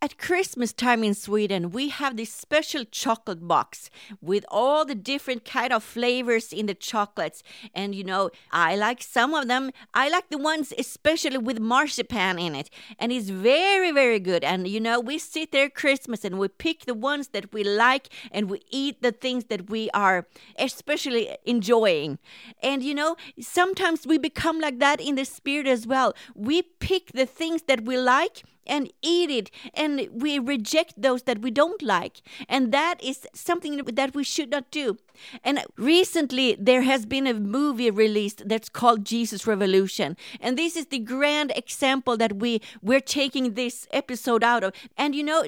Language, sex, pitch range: English, female, 230-295 Hz